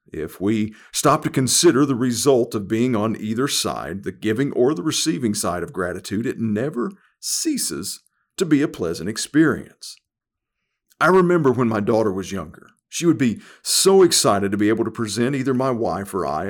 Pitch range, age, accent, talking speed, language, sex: 110-145 Hz, 40-59, American, 180 wpm, English, male